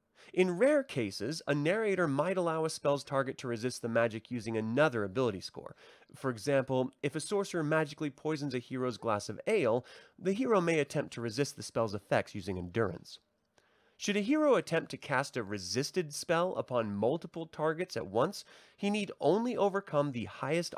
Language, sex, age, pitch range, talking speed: English, male, 30-49, 120-165 Hz, 175 wpm